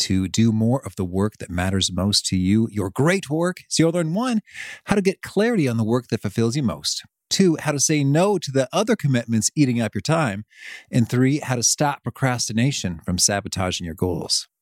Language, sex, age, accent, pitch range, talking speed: English, male, 30-49, American, 110-155 Hz, 215 wpm